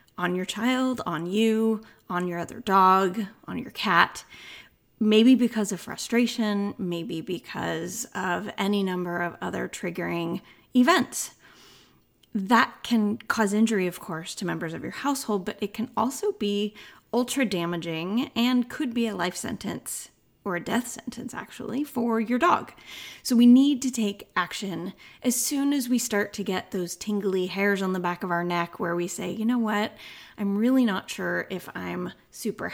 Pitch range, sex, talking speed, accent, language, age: 185-245 Hz, female, 170 wpm, American, English, 20-39